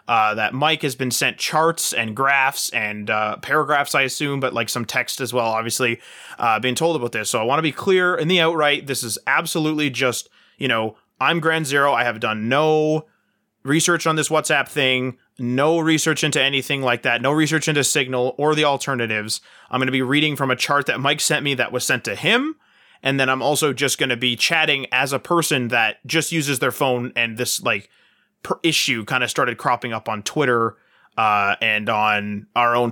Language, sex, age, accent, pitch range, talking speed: English, male, 20-39, American, 120-155 Hz, 210 wpm